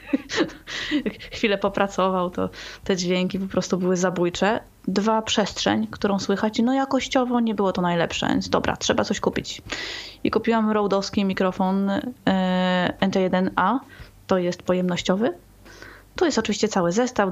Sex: female